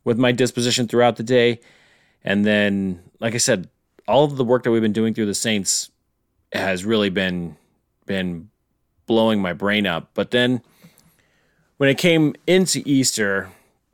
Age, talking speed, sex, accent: 30-49, 160 wpm, male, American